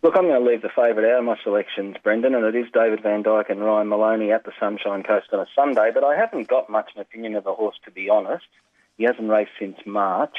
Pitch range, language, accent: 105-120 Hz, English, Australian